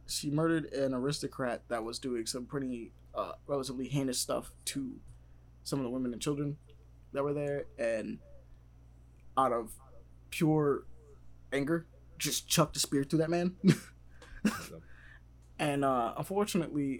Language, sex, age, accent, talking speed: English, male, 20-39, American, 135 wpm